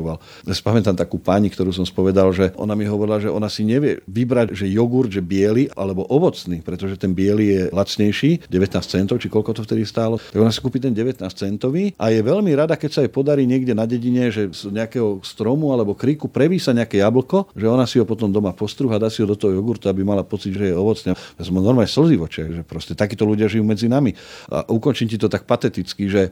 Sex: male